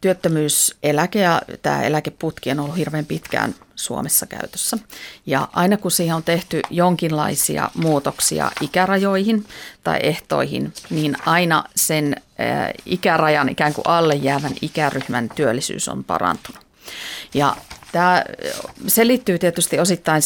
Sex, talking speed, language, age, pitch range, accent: female, 115 wpm, Finnish, 40-59, 155-180 Hz, native